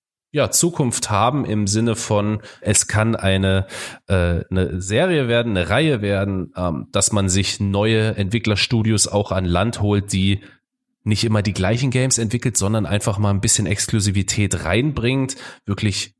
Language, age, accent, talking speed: German, 30-49, German, 150 wpm